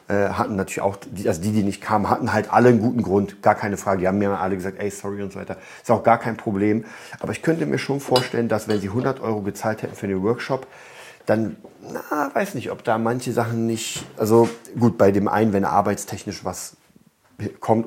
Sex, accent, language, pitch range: male, German, German, 100-120 Hz